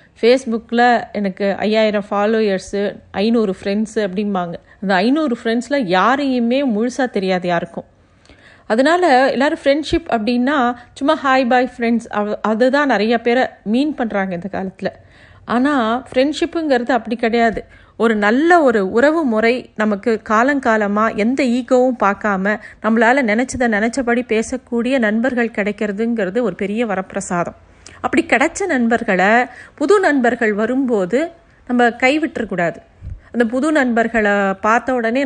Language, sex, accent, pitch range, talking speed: Tamil, female, native, 215-265 Hz, 115 wpm